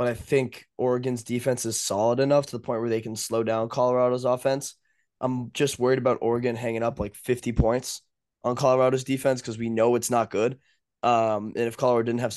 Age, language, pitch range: 20-39, English, 115-130 Hz